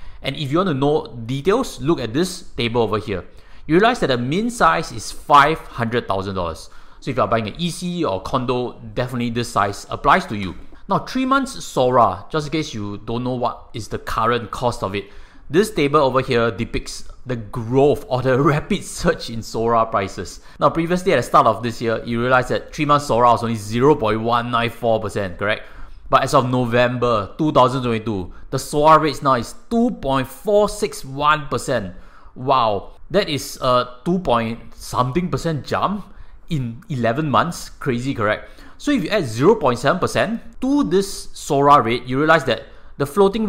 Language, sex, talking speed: English, male, 175 wpm